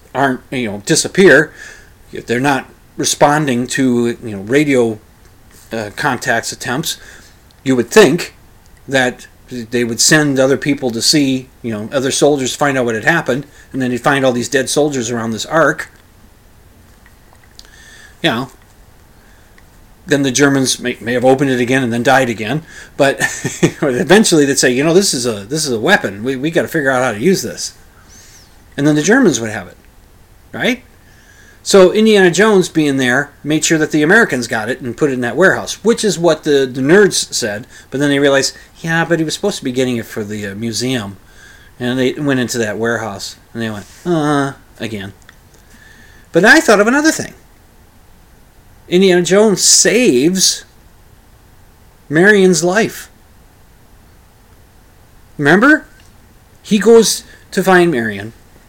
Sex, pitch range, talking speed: male, 110-155 Hz, 165 wpm